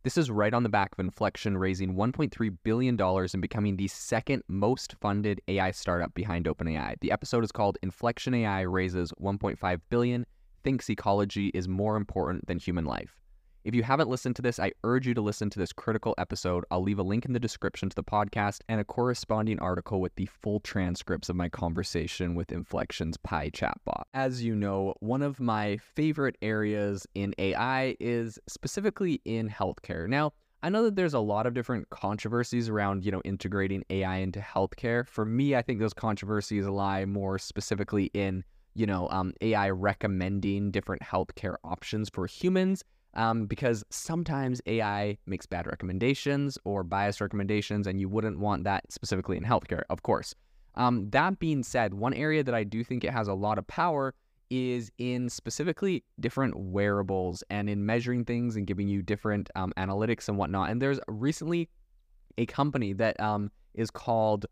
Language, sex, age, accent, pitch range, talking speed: English, male, 20-39, American, 95-120 Hz, 180 wpm